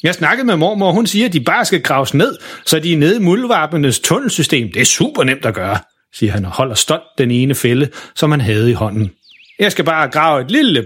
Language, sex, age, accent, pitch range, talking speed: Danish, male, 40-59, native, 125-165 Hz, 250 wpm